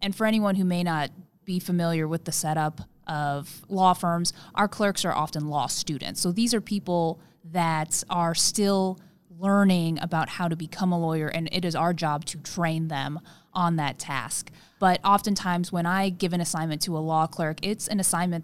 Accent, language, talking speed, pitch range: American, English, 190 wpm, 155-185 Hz